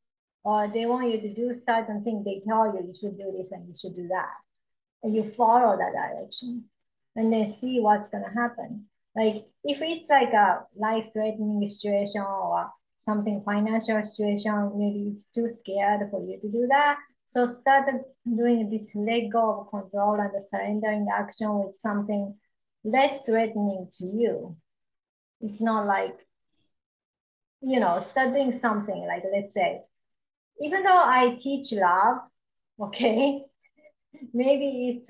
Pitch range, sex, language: 205-240 Hz, male, English